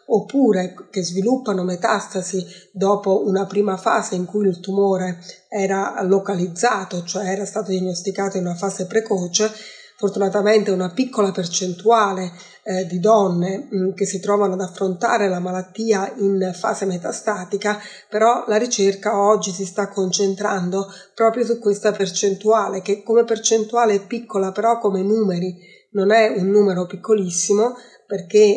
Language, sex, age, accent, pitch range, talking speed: Italian, female, 30-49, native, 190-215 Hz, 135 wpm